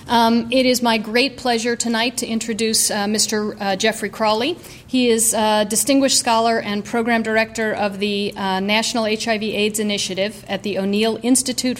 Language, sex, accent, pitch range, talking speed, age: English, female, American, 200-225 Hz, 165 wpm, 50-69